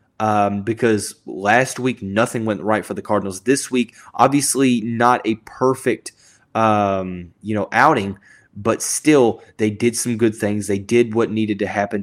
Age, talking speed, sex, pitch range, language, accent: 20-39, 165 wpm, male, 105-125 Hz, English, American